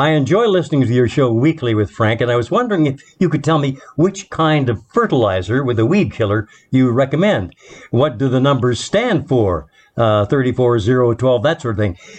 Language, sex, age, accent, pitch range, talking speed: English, male, 60-79, American, 120-160 Hz, 205 wpm